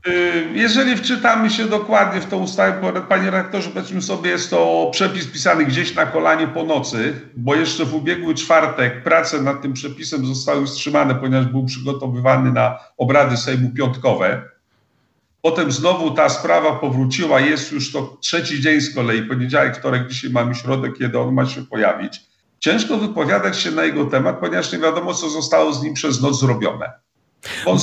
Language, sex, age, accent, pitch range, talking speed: Polish, male, 50-69, native, 125-160 Hz, 170 wpm